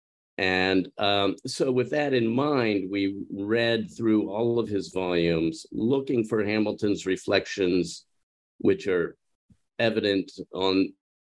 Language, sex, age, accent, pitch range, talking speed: English, male, 50-69, American, 85-110 Hz, 120 wpm